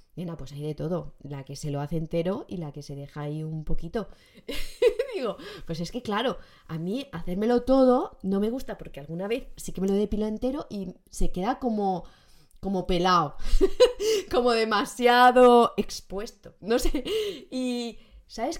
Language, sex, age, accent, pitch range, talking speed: Spanish, female, 20-39, Spanish, 175-255 Hz, 175 wpm